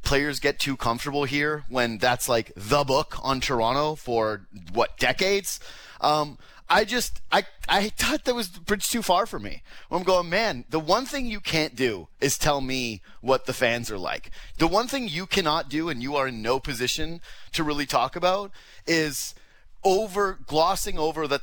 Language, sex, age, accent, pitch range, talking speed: English, male, 30-49, American, 125-170 Hz, 185 wpm